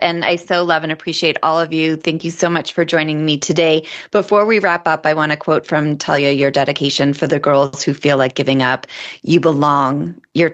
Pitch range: 140-165 Hz